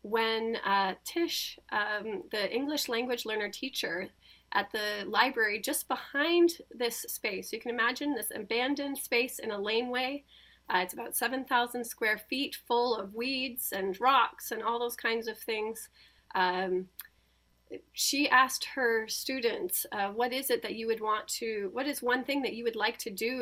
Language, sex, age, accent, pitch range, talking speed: English, female, 30-49, American, 225-270 Hz, 170 wpm